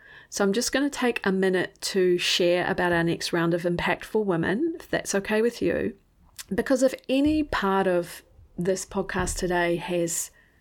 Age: 40-59